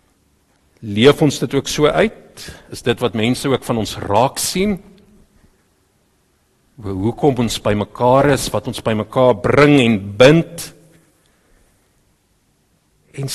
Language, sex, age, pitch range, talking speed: English, male, 50-69, 105-160 Hz, 130 wpm